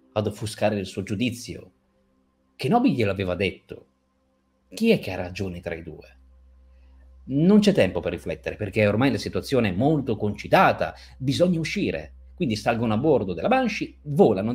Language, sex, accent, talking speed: Italian, male, native, 155 wpm